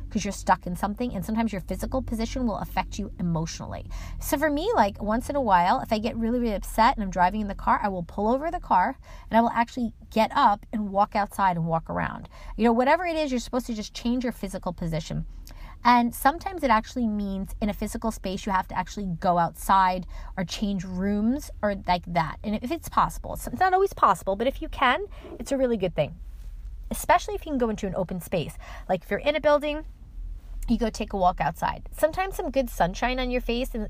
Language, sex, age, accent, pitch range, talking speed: English, female, 30-49, American, 185-245 Hz, 235 wpm